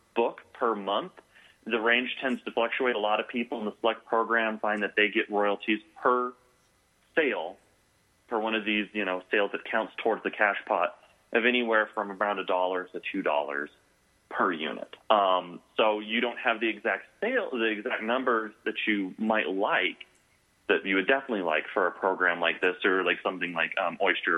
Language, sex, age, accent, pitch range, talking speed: English, male, 30-49, American, 90-115 Hz, 190 wpm